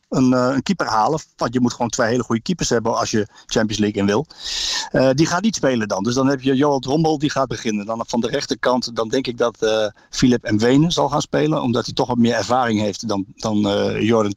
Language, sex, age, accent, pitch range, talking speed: Dutch, male, 50-69, Dutch, 110-130 Hz, 255 wpm